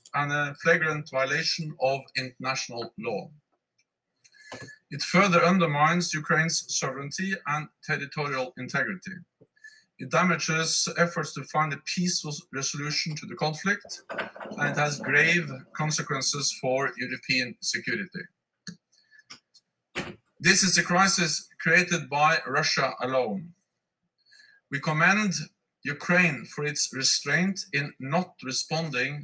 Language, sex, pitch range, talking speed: English, male, 140-180 Hz, 105 wpm